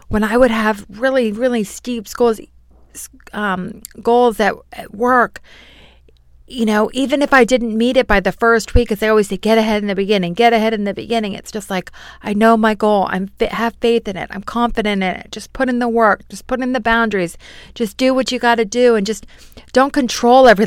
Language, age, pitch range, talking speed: English, 40-59, 200-240 Hz, 225 wpm